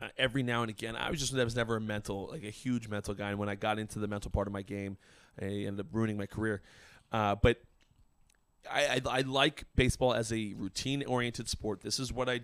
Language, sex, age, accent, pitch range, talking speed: English, male, 30-49, American, 95-115 Hz, 245 wpm